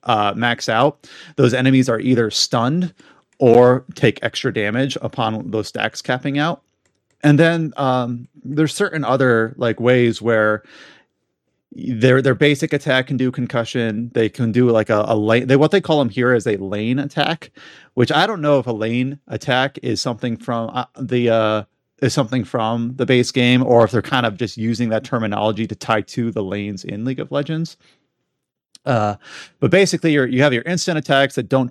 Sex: male